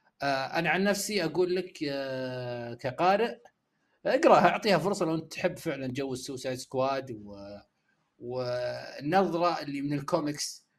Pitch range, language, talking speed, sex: 125-170 Hz, Arabic, 110 wpm, male